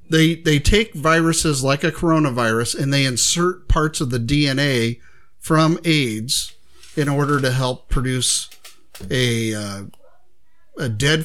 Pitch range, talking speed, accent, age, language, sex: 125-155 Hz, 135 wpm, American, 50-69, English, male